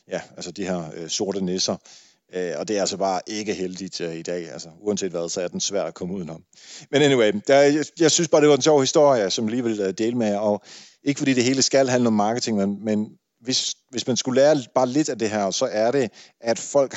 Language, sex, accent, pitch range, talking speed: Danish, male, native, 100-130 Hz, 260 wpm